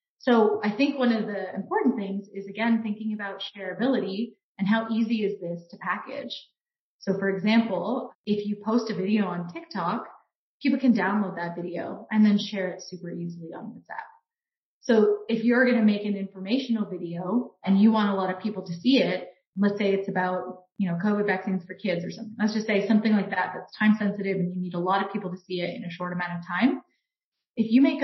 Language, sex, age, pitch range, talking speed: English, female, 30-49, 185-230 Hz, 220 wpm